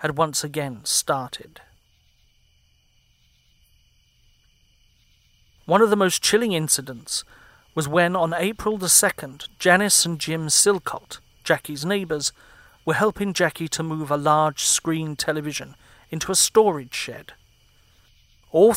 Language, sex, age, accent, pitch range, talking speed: English, male, 40-59, British, 140-175 Hz, 115 wpm